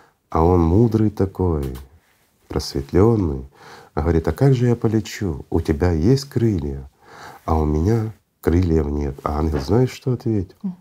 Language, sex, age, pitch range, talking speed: Russian, male, 40-59, 75-100 Hz, 140 wpm